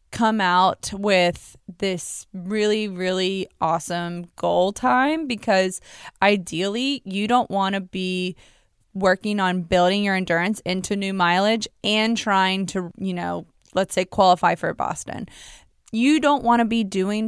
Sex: female